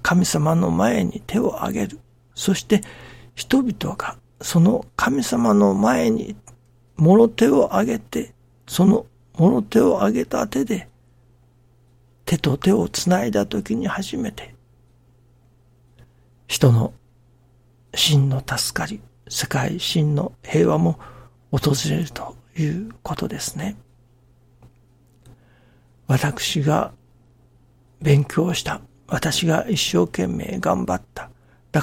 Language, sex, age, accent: Japanese, male, 60-79, native